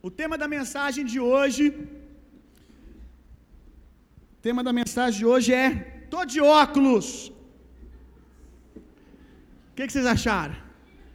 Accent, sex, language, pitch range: Brazilian, male, Gujarati, 235-295 Hz